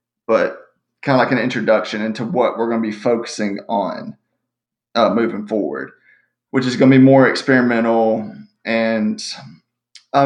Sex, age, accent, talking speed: male, 30-49, American, 150 wpm